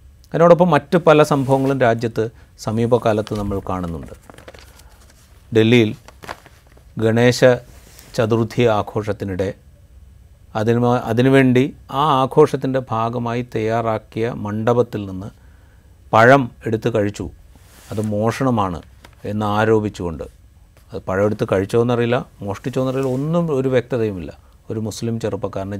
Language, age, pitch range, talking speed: Malayalam, 30-49, 95-115 Hz, 85 wpm